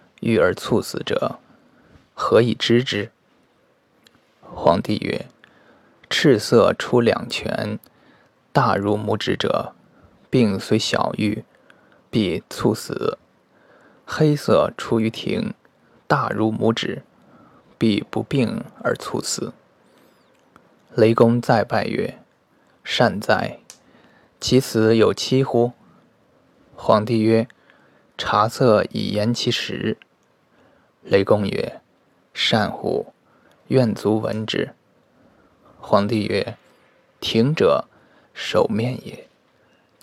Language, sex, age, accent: Chinese, male, 20-39, native